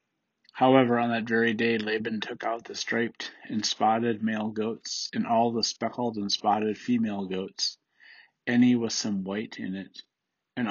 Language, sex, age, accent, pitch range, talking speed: English, male, 40-59, American, 100-120 Hz, 165 wpm